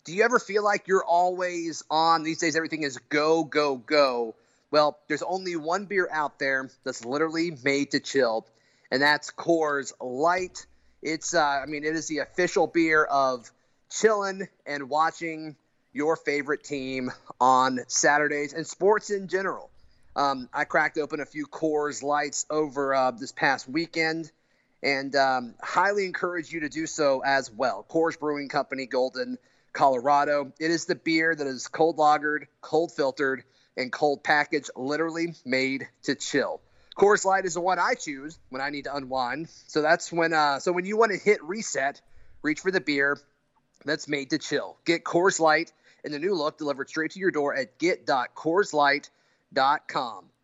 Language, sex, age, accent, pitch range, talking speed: English, male, 30-49, American, 140-170 Hz, 170 wpm